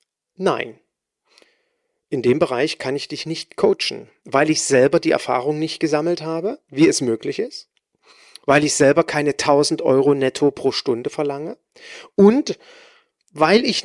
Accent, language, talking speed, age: German, German, 145 wpm, 40-59